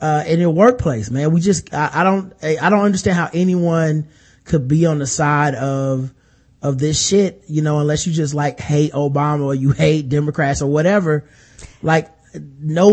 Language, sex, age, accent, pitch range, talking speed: English, male, 20-39, American, 140-175 Hz, 190 wpm